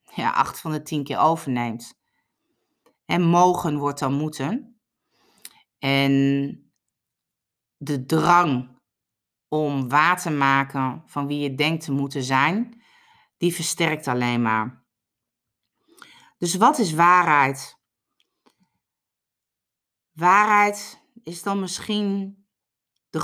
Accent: Dutch